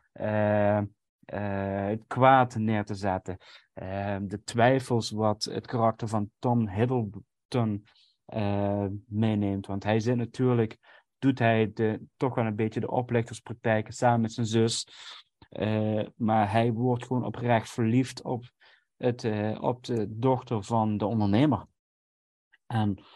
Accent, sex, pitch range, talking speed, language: Dutch, male, 105-125 Hz, 135 wpm, Dutch